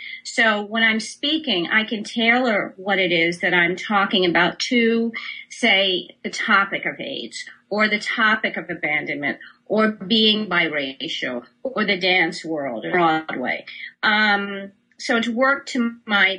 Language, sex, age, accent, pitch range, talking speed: English, female, 40-59, American, 185-235 Hz, 145 wpm